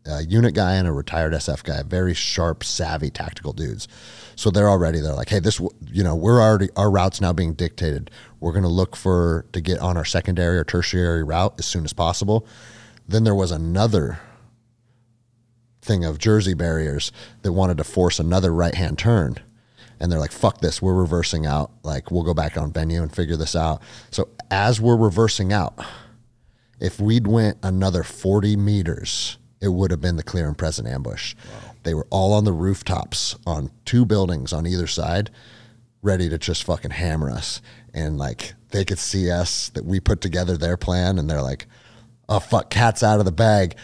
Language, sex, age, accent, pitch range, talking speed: English, male, 30-49, American, 85-110 Hz, 190 wpm